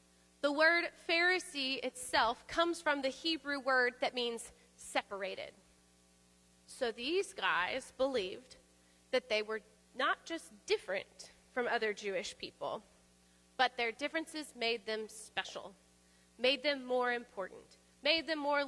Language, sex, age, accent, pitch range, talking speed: English, female, 30-49, American, 200-295 Hz, 125 wpm